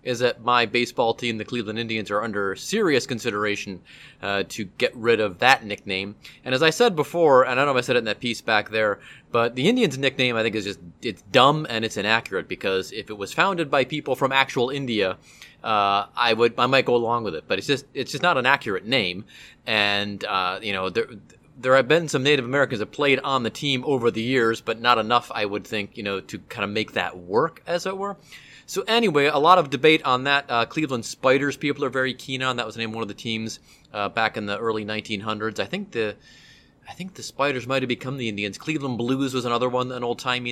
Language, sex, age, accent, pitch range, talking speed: English, male, 30-49, American, 110-145 Hz, 240 wpm